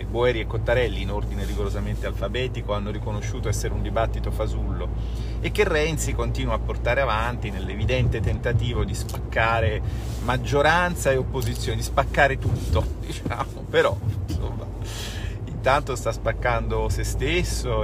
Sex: male